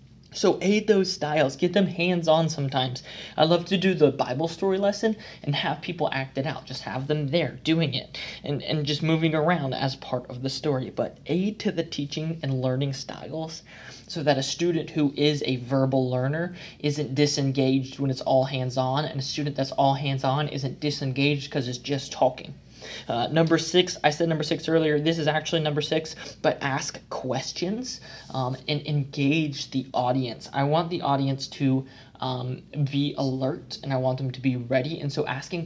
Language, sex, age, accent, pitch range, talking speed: English, male, 20-39, American, 135-160 Hz, 190 wpm